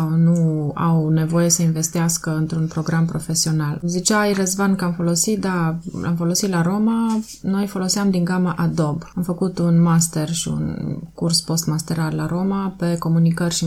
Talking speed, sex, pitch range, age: 160 wpm, female, 165-190 Hz, 20-39